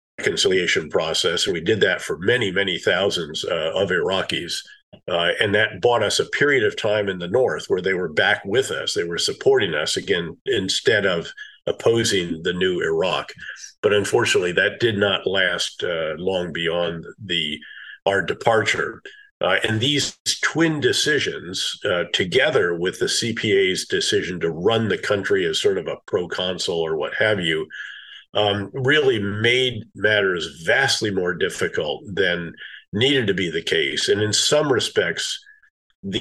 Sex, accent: male, American